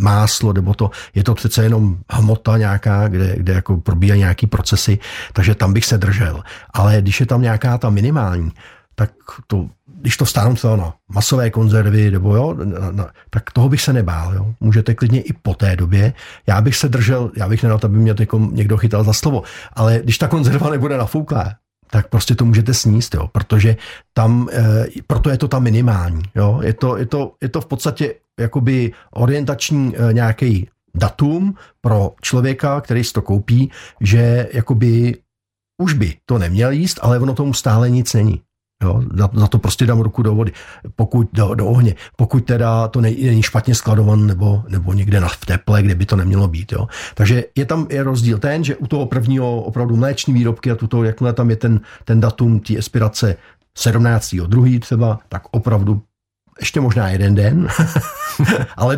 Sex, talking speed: male, 185 wpm